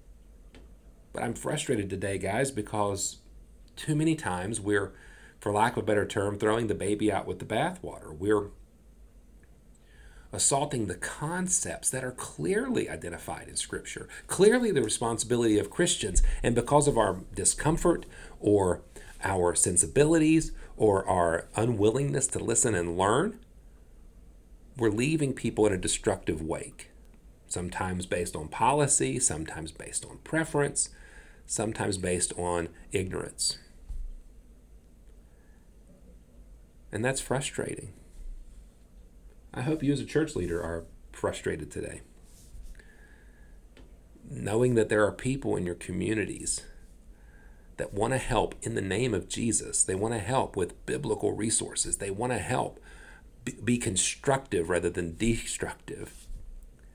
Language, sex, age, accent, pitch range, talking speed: English, male, 40-59, American, 85-125 Hz, 125 wpm